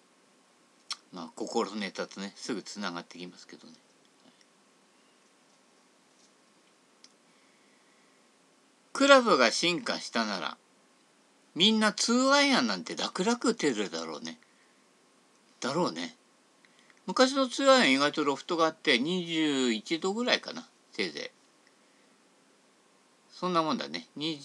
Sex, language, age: male, Japanese, 50-69